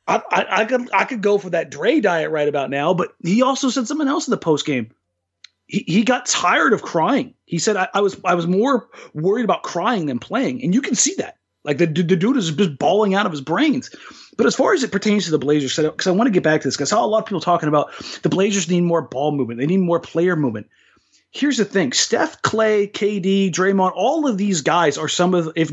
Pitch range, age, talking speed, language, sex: 145-215 Hz, 30-49, 260 wpm, English, male